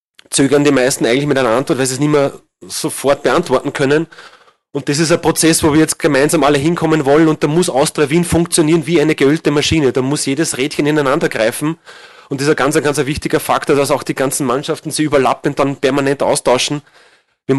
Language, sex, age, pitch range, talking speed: German, male, 30-49, 135-155 Hz, 210 wpm